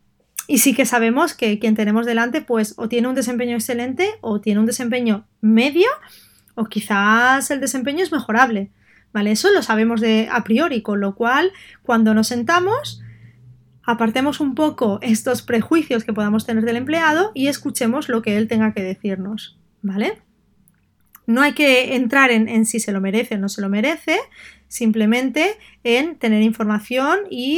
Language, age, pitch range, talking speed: Spanish, 20-39, 215-255 Hz, 170 wpm